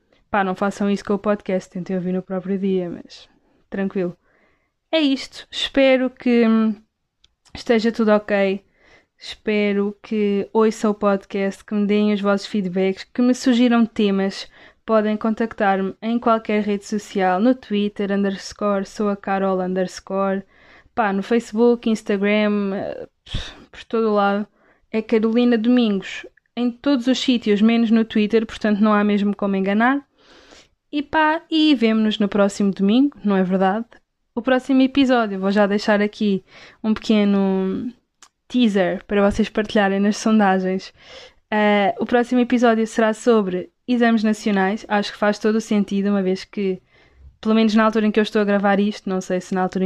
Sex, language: female, Portuguese